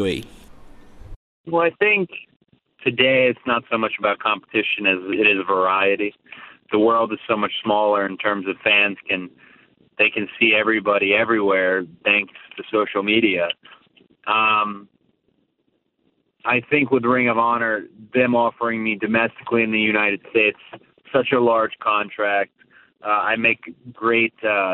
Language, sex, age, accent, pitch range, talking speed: English, male, 30-49, American, 100-115 Hz, 140 wpm